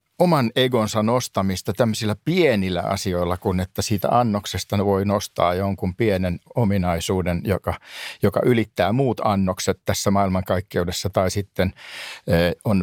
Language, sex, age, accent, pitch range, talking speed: Finnish, male, 60-79, native, 95-140 Hz, 120 wpm